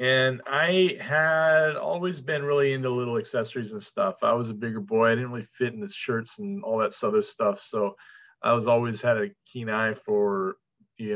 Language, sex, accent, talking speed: English, male, American, 205 wpm